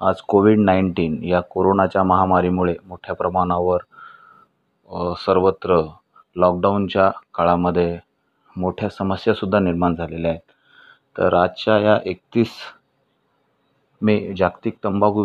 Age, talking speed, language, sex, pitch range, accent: 30-49, 90 wpm, Marathi, male, 90-105 Hz, native